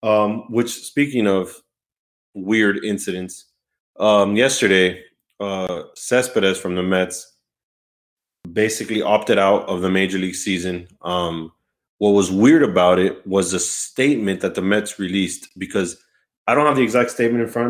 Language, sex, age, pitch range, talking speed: English, male, 20-39, 95-120 Hz, 145 wpm